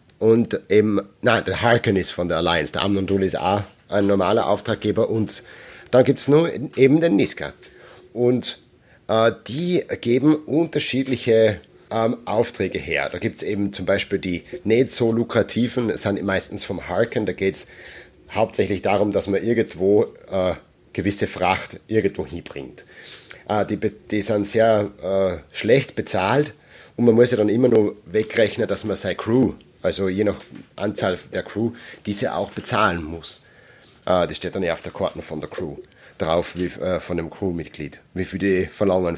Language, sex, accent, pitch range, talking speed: German, male, German, 95-120 Hz, 165 wpm